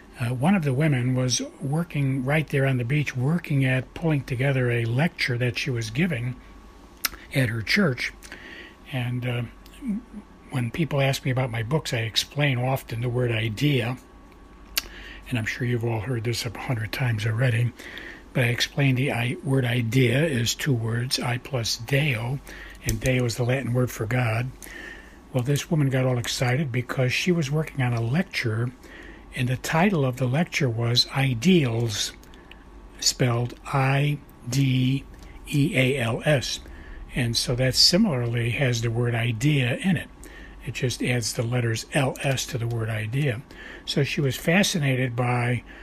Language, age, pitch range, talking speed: English, 60-79, 120-140 Hz, 155 wpm